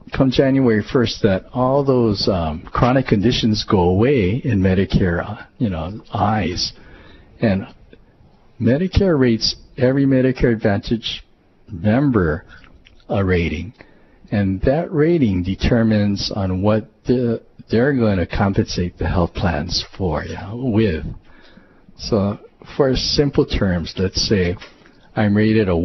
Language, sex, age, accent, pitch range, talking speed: English, male, 50-69, American, 90-115 Hz, 125 wpm